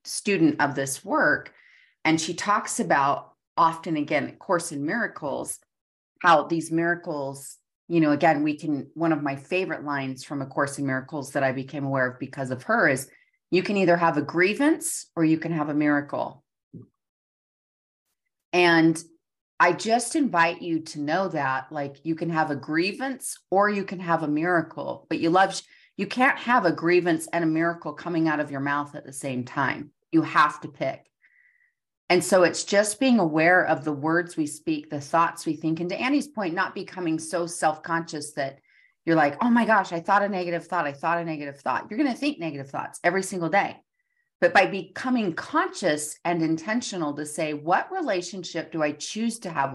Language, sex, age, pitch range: English, female, 30-49, 150-195 Hz